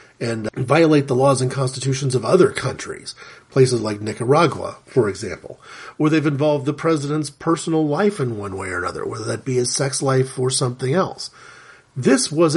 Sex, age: male, 40-59